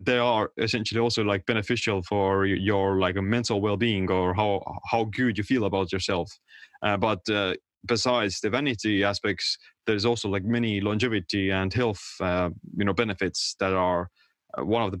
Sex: male